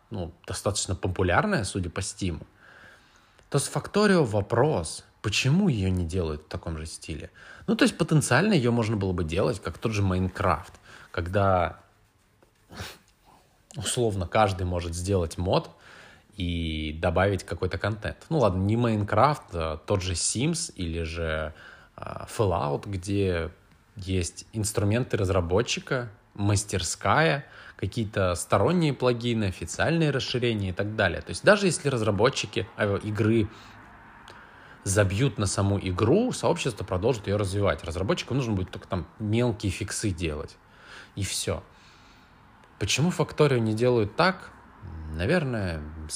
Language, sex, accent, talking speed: Russian, male, native, 120 wpm